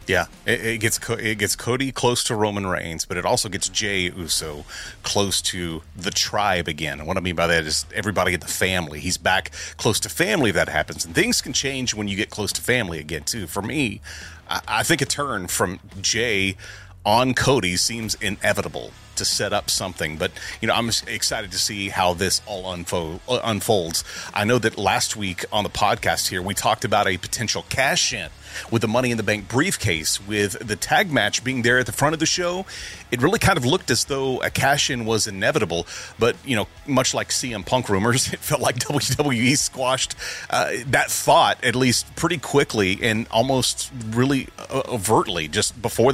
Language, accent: English, American